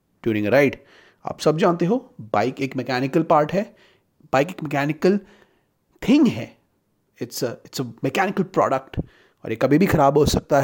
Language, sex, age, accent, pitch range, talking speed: Hindi, male, 30-49, native, 120-185 Hz, 165 wpm